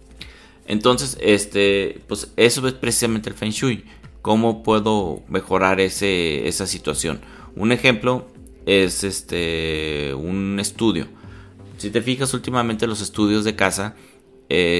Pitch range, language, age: 90-115 Hz, Spanish, 30-49